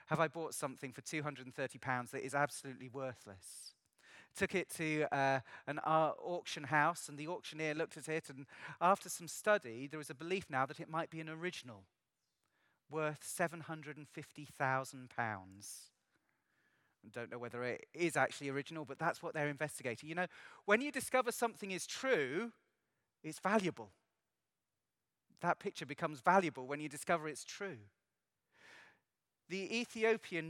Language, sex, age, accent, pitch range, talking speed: English, male, 30-49, British, 130-170 Hz, 150 wpm